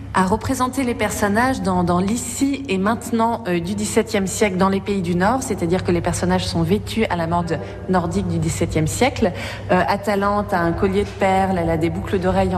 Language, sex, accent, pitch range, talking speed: French, female, French, 165-210 Hz, 205 wpm